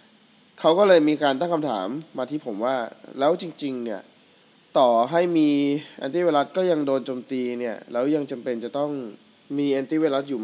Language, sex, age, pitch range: Thai, male, 20-39, 125-160 Hz